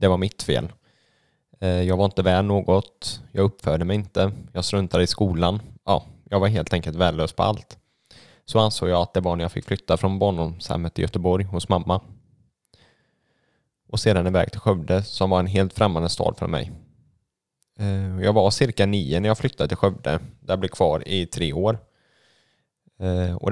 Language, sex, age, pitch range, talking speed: Swedish, male, 10-29, 90-105 Hz, 185 wpm